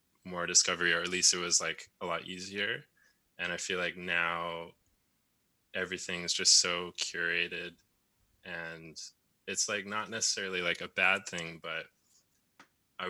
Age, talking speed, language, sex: 20-39, 145 wpm, English, male